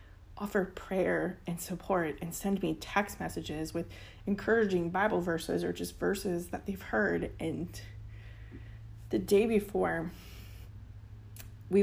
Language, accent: English, American